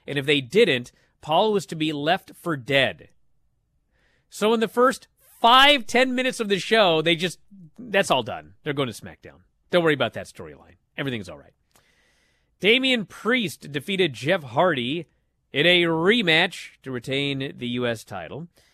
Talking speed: 165 wpm